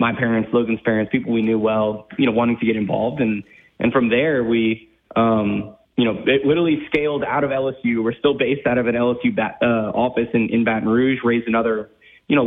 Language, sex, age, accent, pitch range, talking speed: English, male, 20-39, American, 115-135 Hz, 220 wpm